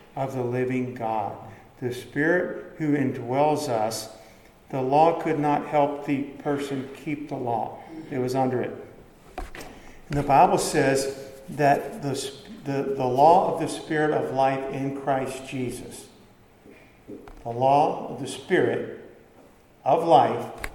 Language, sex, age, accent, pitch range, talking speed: English, male, 50-69, American, 120-150 Hz, 135 wpm